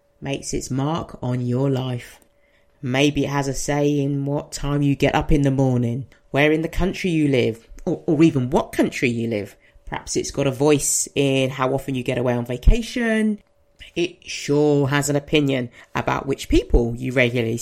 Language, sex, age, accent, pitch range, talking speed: English, female, 30-49, British, 135-195 Hz, 190 wpm